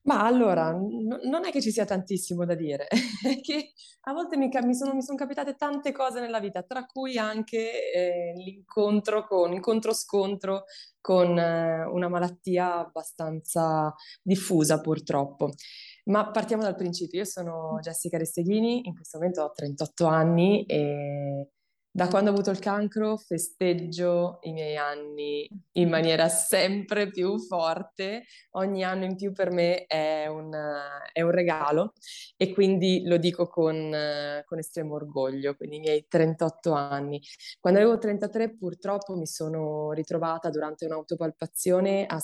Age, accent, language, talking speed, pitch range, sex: 20-39, native, Italian, 150 wpm, 160-205 Hz, female